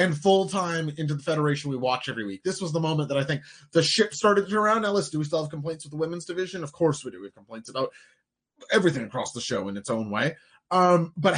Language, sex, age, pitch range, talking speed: English, male, 20-39, 150-195 Hz, 265 wpm